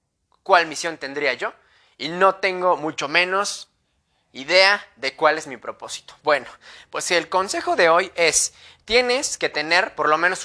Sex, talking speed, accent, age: male, 165 wpm, Mexican, 20-39